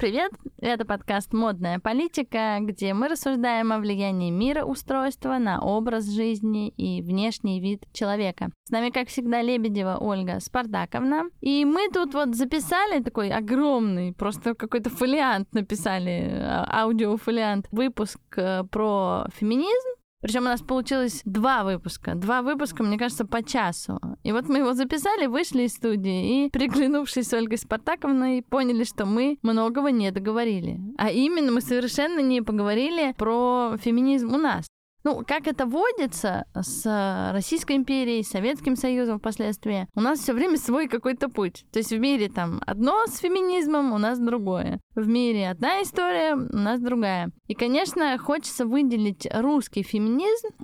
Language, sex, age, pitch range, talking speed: Russian, female, 20-39, 215-275 Hz, 145 wpm